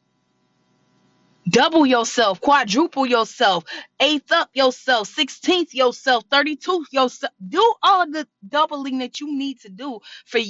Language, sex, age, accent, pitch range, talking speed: English, female, 20-39, American, 235-335 Hz, 125 wpm